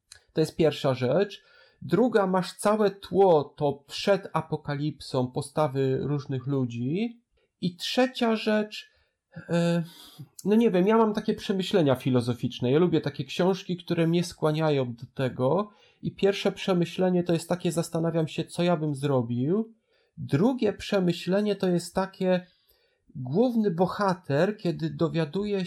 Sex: male